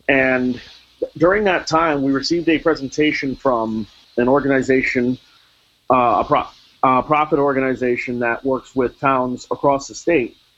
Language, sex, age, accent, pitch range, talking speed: English, male, 40-59, American, 125-155 Hz, 130 wpm